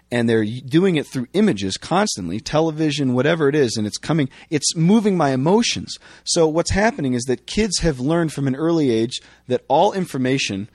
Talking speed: 185 wpm